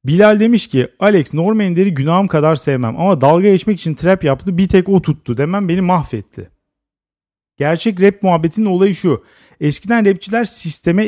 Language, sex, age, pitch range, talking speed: Turkish, male, 40-59, 155-205 Hz, 155 wpm